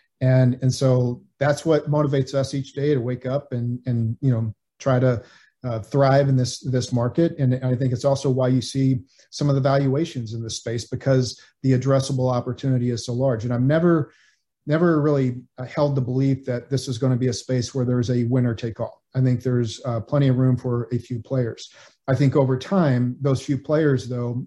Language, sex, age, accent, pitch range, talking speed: English, male, 40-59, American, 125-140 Hz, 215 wpm